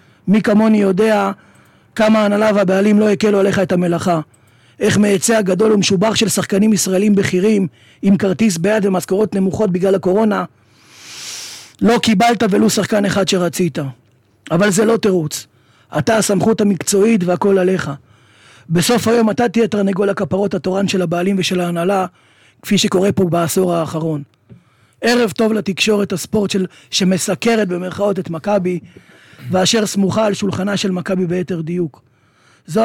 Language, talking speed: Hebrew, 135 wpm